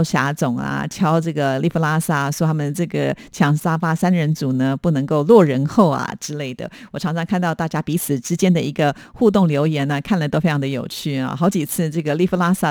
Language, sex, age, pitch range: Chinese, female, 50-69, 150-190 Hz